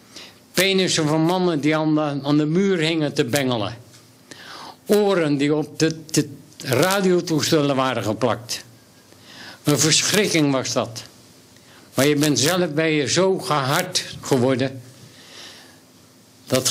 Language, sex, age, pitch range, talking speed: Dutch, male, 60-79, 125-160 Hz, 120 wpm